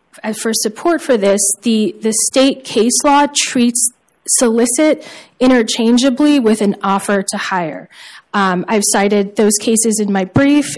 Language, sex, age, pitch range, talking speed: English, female, 10-29, 200-240 Hz, 145 wpm